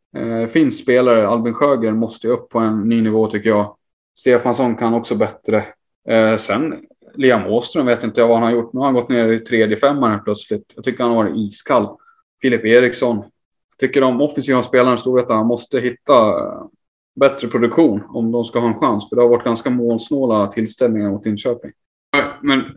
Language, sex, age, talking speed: Swedish, male, 20-39, 185 wpm